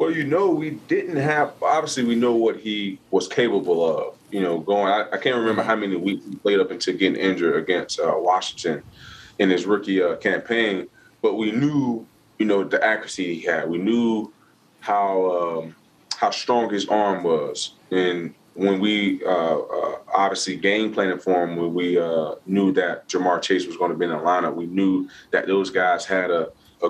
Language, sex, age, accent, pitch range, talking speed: English, male, 20-39, American, 95-120 Hz, 190 wpm